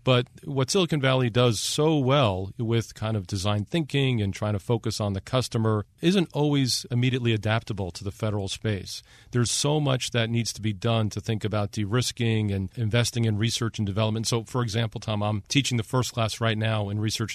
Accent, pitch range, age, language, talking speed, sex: American, 105-125 Hz, 40-59, English, 200 wpm, male